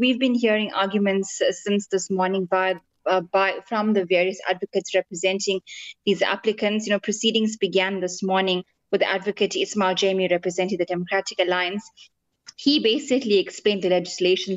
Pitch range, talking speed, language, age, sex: 180-205 Hz, 150 wpm, English, 20-39, female